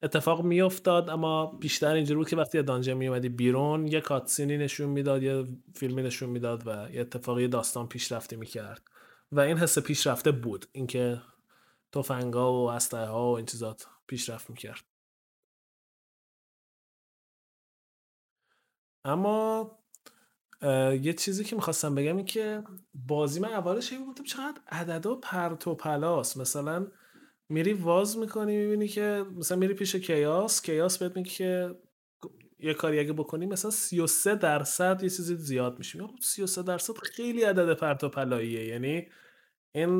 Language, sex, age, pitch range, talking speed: Persian, male, 20-39, 140-185 Hz, 140 wpm